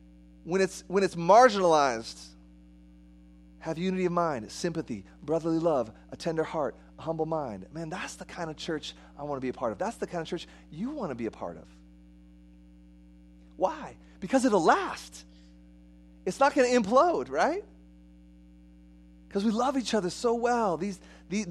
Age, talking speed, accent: 30-49, 175 wpm, American